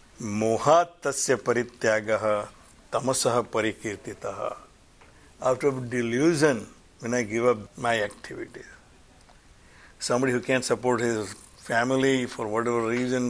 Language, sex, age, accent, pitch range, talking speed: English, male, 60-79, Indian, 115-130 Hz, 80 wpm